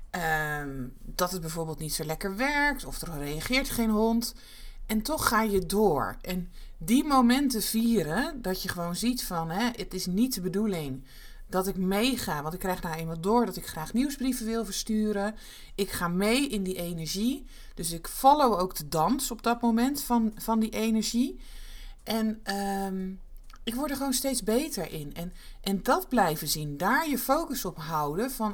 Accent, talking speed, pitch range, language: Dutch, 175 wpm, 175-250 Hz, Dutch